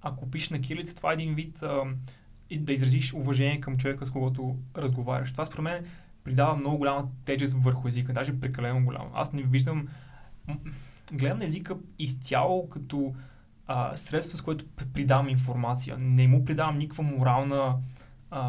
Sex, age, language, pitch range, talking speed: male, 20-39, Bulgarian, 130-145 Hz, 160 wpm